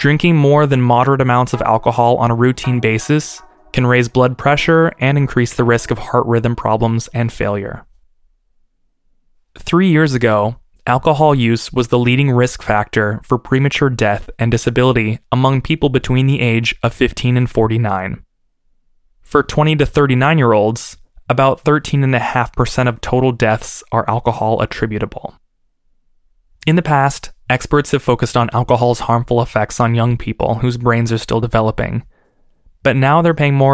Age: 20-39